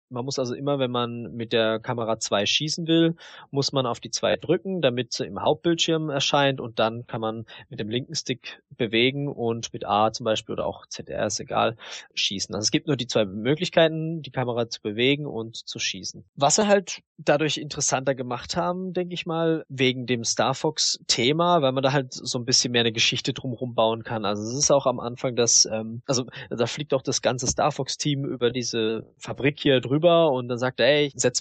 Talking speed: 210 wpm